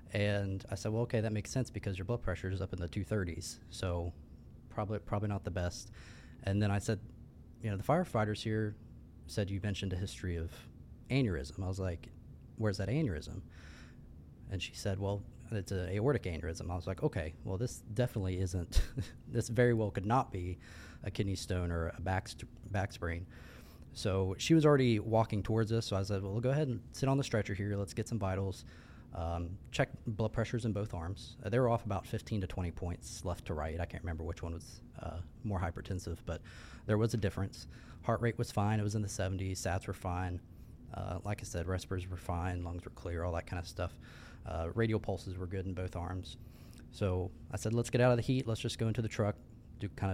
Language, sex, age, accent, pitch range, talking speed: English, male, 20-39, American, 90-110 Hz, 220 wpm